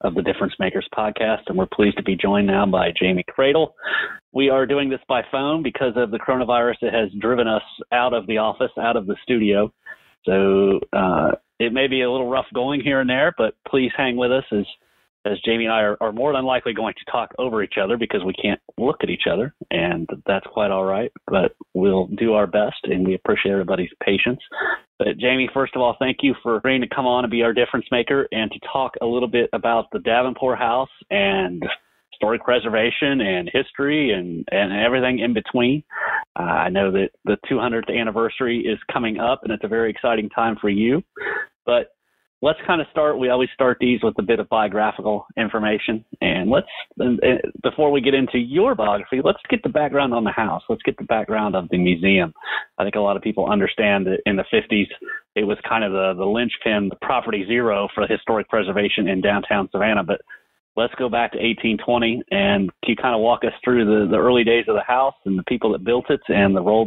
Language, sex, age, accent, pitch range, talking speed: English, male, 30-49, American, 100-125 Hz, 215 wpm